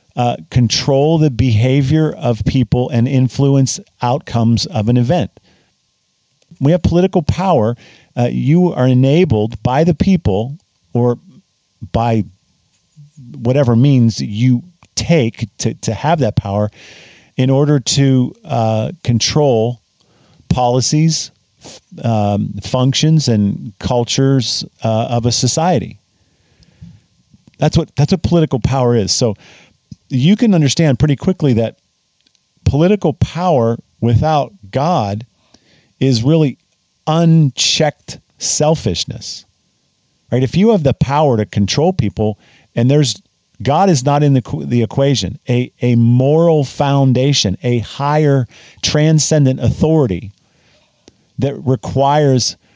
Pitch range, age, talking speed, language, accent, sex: 115-150 Hz, 50-69, 115 wpm, English, American, male